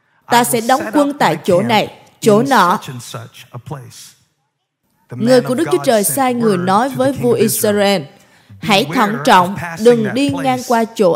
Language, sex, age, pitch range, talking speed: Vietnamese, female, 20-39, 175-270 Hz, 150 wpm